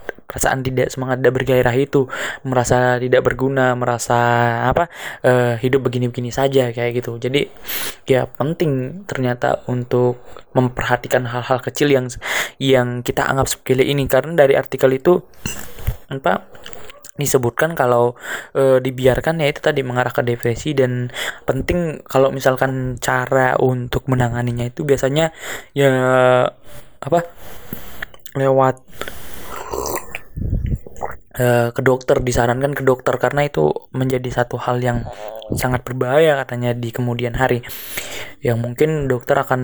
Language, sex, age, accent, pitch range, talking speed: Indonesian, male, 20-39, native, 125-135 Hz, 120 wpm